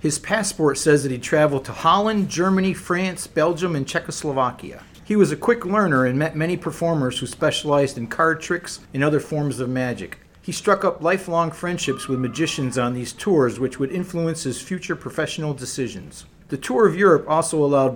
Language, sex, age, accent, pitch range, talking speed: English, male, 50-69, American, 135-170 Hz, 185 wpm